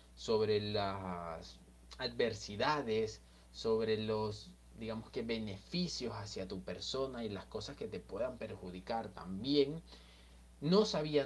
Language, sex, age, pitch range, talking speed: Spanish, male, 30-49, 100-125 Hz, 110 wpm